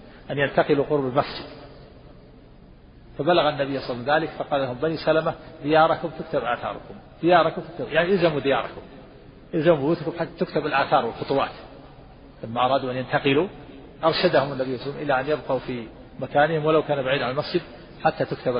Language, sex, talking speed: Arabic, male, 160 wpm